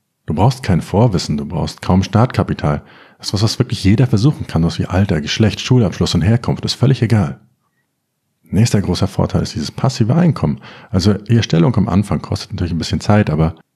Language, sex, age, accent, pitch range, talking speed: German, male, 50-69, German, 85-110 Hz, 195 wpm